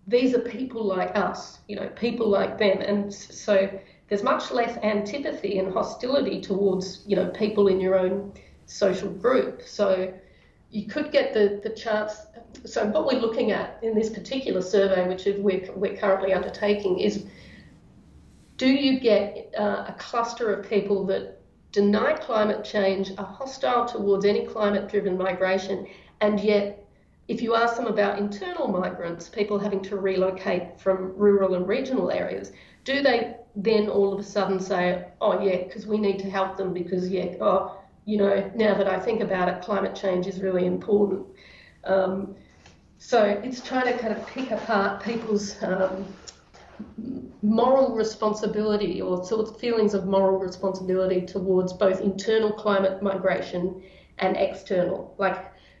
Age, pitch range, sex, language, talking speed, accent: 40-59, 190-220 Hz, female, English, 155 wpm, Australian